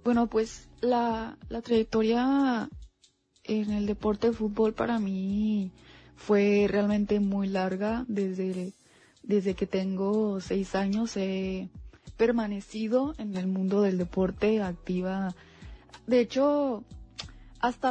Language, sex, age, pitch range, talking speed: Spanish, female, 20-39, 195-230 Hz, 115 wpm